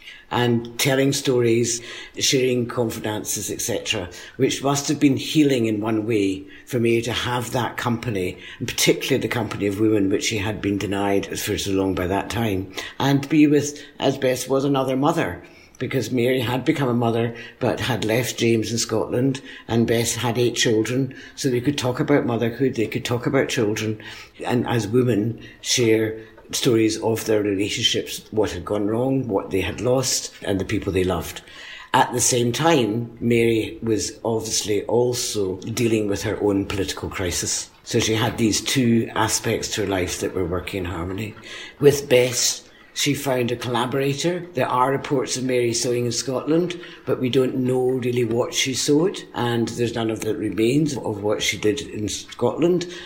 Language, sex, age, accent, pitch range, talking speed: English, female, 60-79, British, 110-130 Hz, 180 wpm